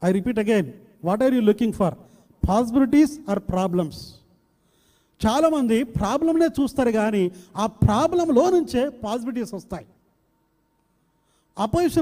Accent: native